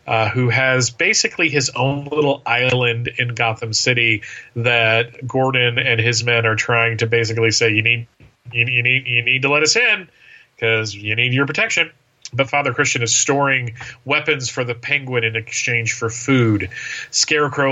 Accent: American